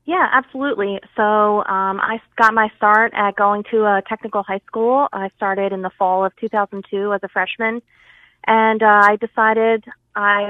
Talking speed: 170 wpm